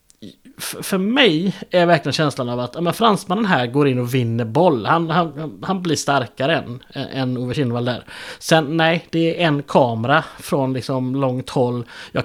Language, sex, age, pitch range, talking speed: Swedish, male, 30-49, 130-175 Hz, 170 wpm